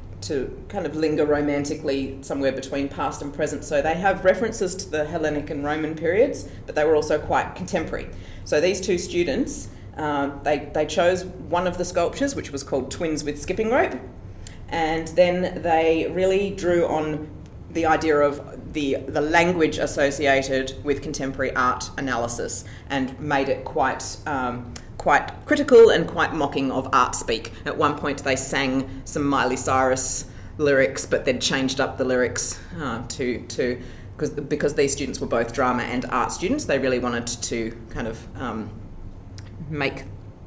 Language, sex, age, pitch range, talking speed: English, female, 30-49, 120-155 Hz, 165 wpm